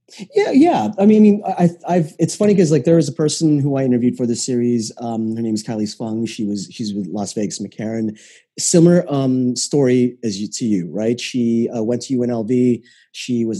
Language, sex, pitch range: English, male, 110-130 Hz